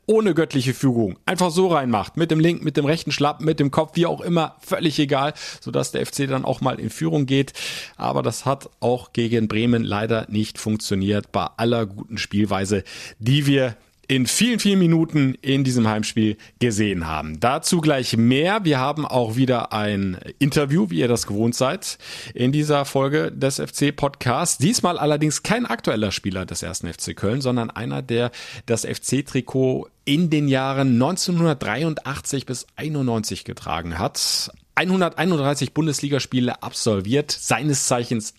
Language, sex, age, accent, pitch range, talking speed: German, male, 40-59, German, 110-145 Hz, 155 wpm